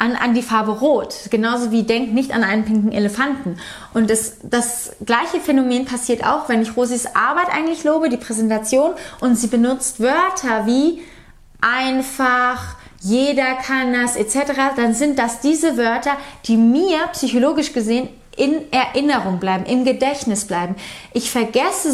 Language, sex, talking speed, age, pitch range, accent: German, female, 150 wpm, 30-49, 220-275 Hz, German